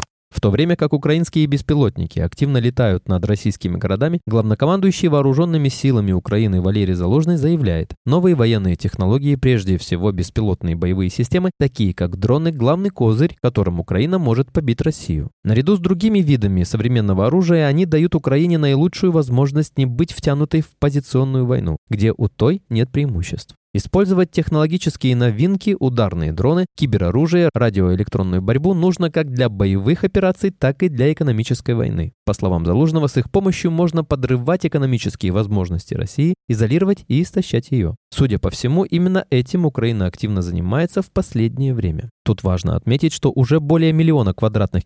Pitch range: 105-160 Hz